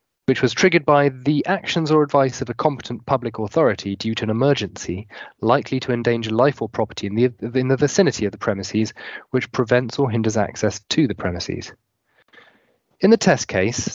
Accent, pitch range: British, 105-130 Hz